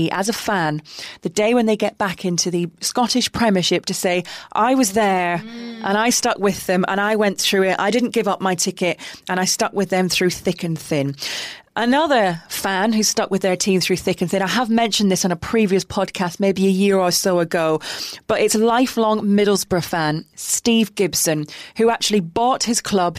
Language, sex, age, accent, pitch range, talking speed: English, female, 30-49, British, 185-225 Hz, 210 wpm